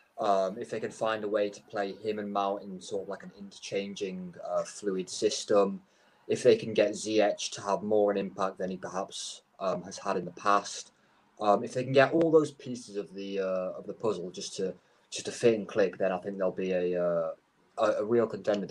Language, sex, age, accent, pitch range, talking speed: English, male, 30-49, British, 95-115 Hz, 230 wpm